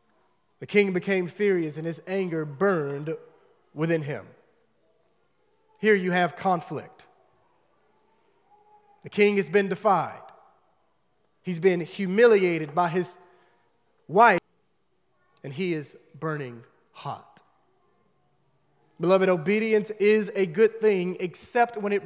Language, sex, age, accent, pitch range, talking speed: English, male, 30-49, American, 180-220 Hz, 105 wpm